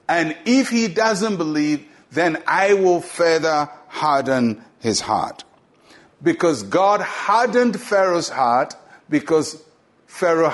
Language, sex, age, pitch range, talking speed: English, male, 60-79, 145-200 Hz, 110 wpm